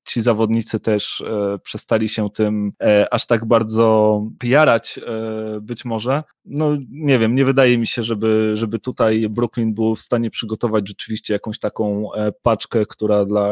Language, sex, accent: Polish, male, native